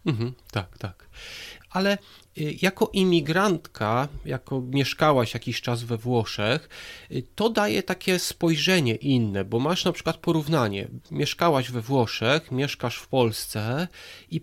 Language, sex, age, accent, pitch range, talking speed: Polish, male, 40-59, native, 130-175 Hz, 115 wpm